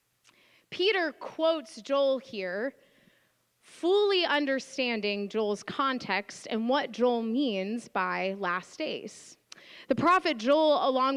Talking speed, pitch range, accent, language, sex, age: 100 wpm, 225-290 Hz, American, English, female, 20-39